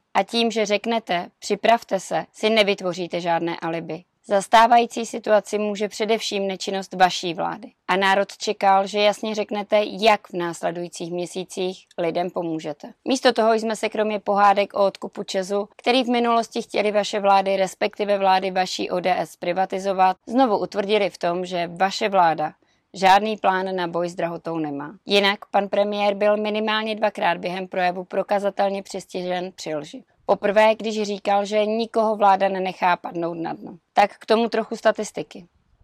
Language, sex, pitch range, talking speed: Czech, female, 185-215 Hz, 150 wpm